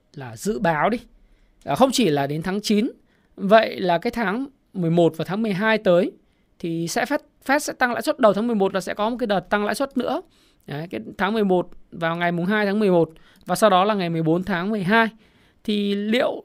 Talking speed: 225 wpm